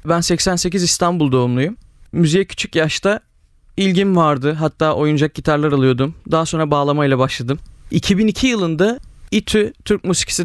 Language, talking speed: Turkish, 125 wpm